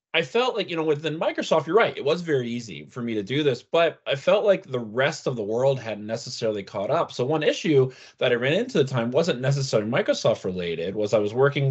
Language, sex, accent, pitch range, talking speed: English, male, American, 110-140 Hz, 250 wpm